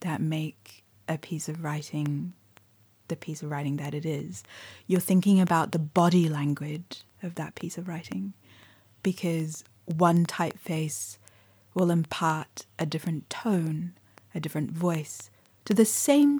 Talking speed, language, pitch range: 140 wpm, English, 110-175 Hz